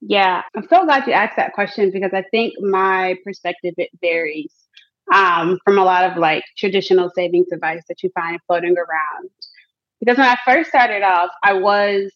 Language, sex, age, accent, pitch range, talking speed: English, female, 20-39, American, 185-250 Hz, 185 wpm